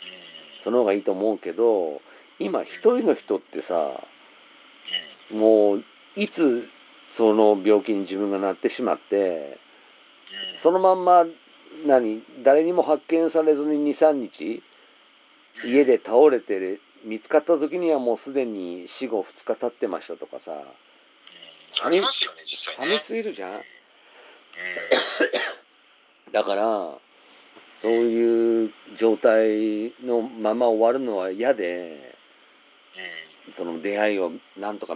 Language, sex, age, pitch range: Japanese, male, 50-69, 105-170 Hz